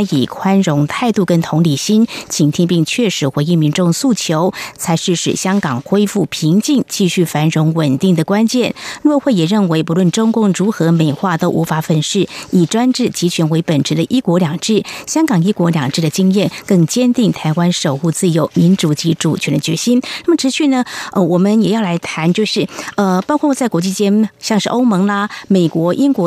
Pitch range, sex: 170-235 Hz, female